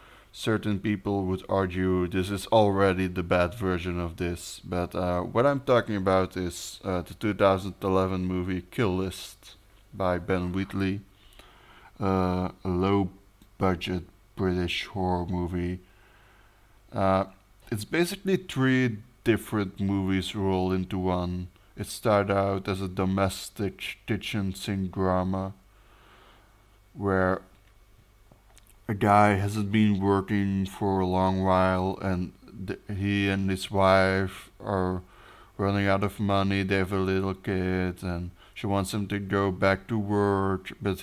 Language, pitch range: English, 95-100 Hz